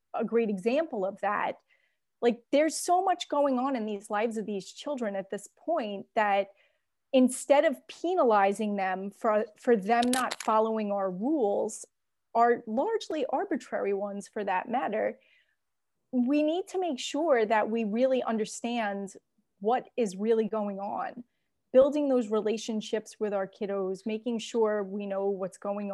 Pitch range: 205-255 Hz